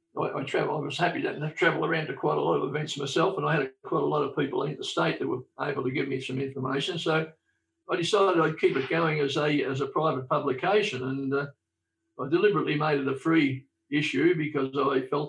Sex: male